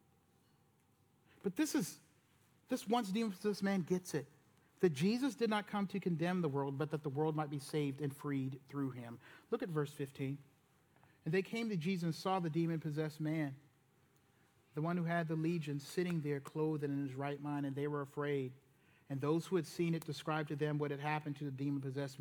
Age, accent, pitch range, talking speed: 40-59, American, 155-230 Hz, 205 wpm